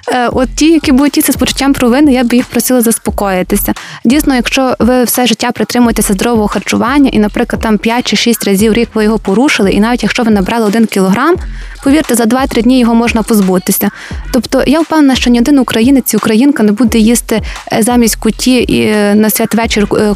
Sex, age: female, 20-39